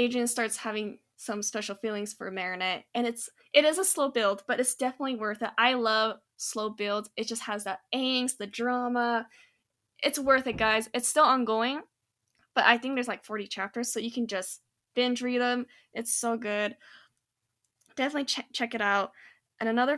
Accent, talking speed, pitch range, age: American, 190 wpm, 200-240 Hz, 10-29